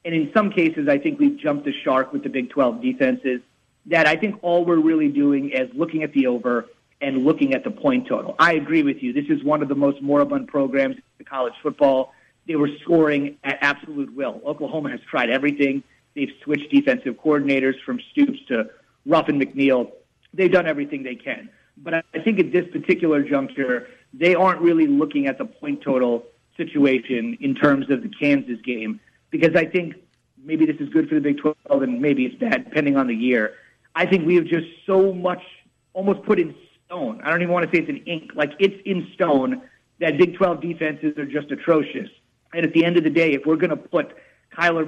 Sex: male